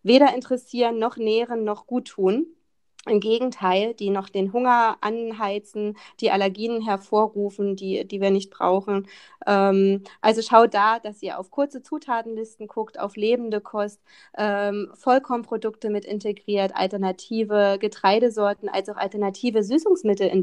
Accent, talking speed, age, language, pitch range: German, 135 wpm, 30-49, German, 205-245 Hz